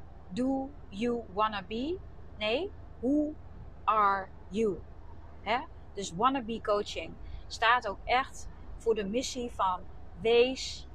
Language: Dutch